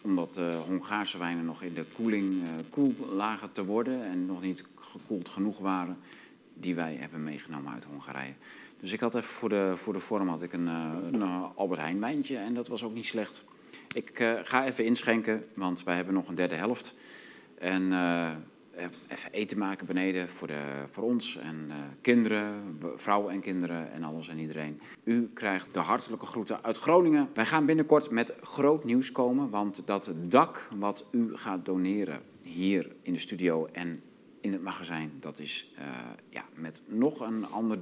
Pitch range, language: 85-115 Hz, Dutch